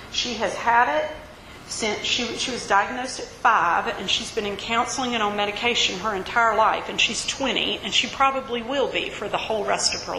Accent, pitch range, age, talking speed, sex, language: American, 215-275 Hz, 40-59, 210 wpm, female, English